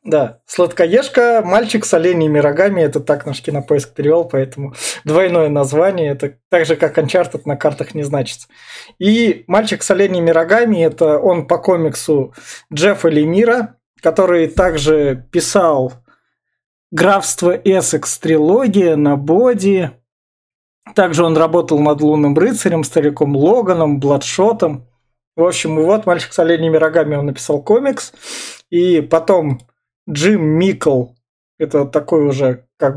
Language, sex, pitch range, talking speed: Russian, male, 145-185 Hz, 125 wpm